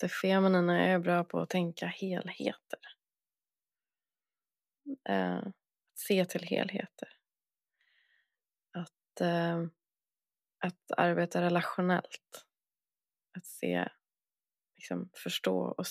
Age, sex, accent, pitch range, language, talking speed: 20-39, female, native, 170-190 Hz, Swedish, 85 wpm